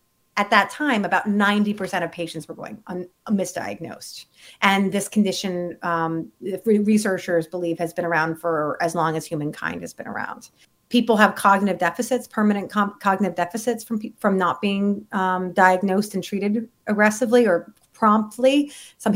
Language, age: English, 30-49